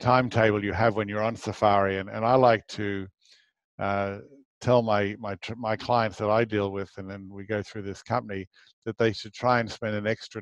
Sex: male